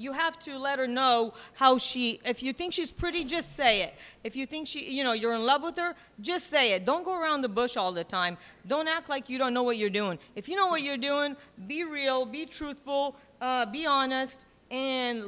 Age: 40-59